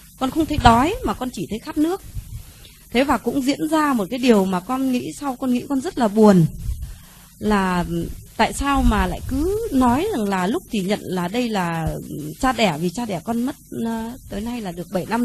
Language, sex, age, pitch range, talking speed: Vietnamese, female, 20-39, 180-265 Hz, 220 wpm